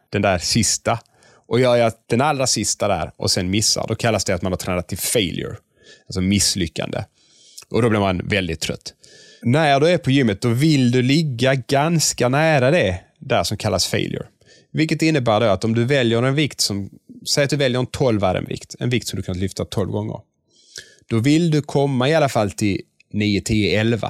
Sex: male